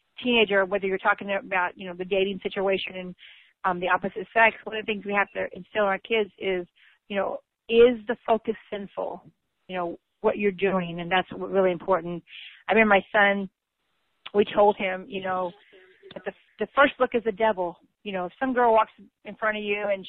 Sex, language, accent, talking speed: female, English, American, 210 wpm